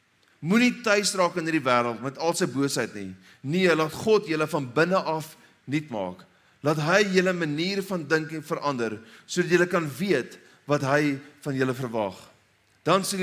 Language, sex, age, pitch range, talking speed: English, male, 30-49, 130-180 Hz, 175 wpm